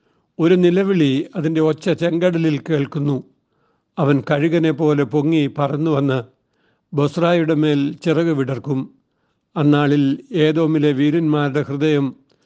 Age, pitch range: 60-79, 145-170 Hz